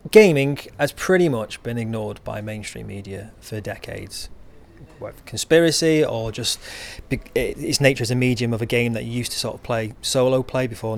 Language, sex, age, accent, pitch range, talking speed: English, male, 30-49, British, 110-130 Hz, 180 wpm